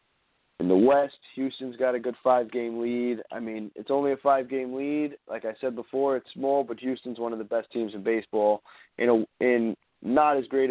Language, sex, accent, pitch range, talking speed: English, male, American, 115-135 Hz, 205 wpm